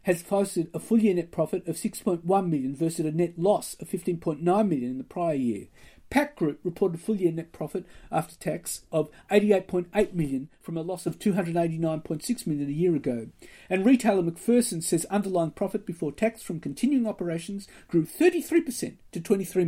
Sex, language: male, English